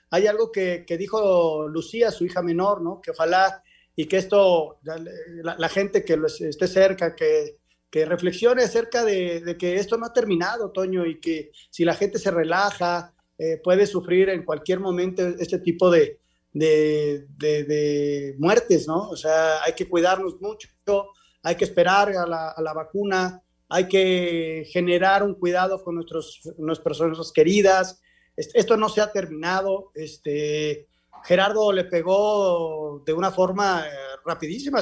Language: Spanish